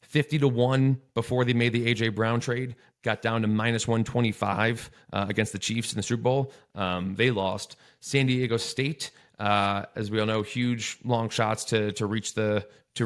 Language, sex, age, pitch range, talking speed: English, male, 30-49, 105-125 Hz, 195 wpm